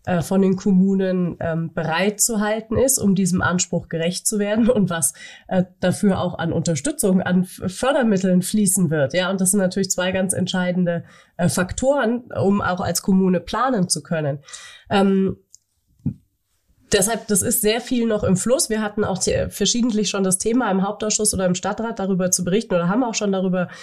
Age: 30-49